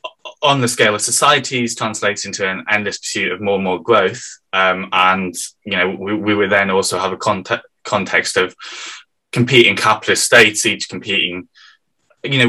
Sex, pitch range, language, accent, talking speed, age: male, 100-120 Hz, English, British, 175 wpm, 20-39